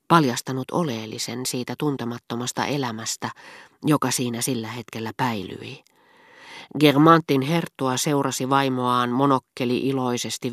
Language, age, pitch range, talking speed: Finnish, 40-59, 120-150 Hz, 90 wpm